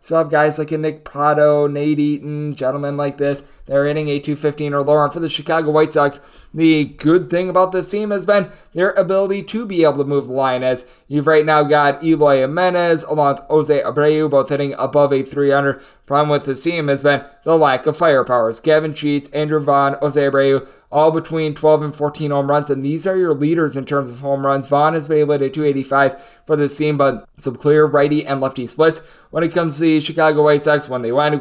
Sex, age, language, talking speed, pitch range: male, 20-39, English, 225 wpm, 135-155 Hz